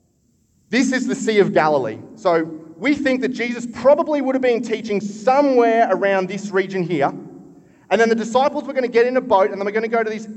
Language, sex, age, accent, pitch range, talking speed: English, male, 30-49, Australian, 180-235 Hz, 230 wpm